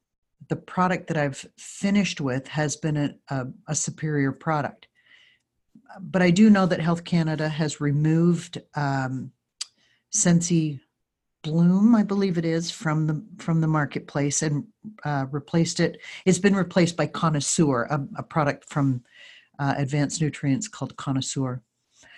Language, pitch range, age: English, 145-180 Hz, 50-69